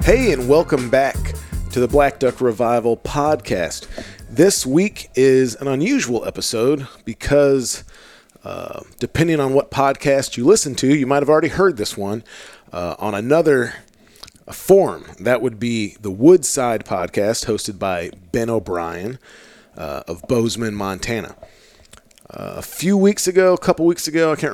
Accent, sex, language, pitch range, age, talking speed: American, male, English, 105-135 Hz, 40-59, 150 wpm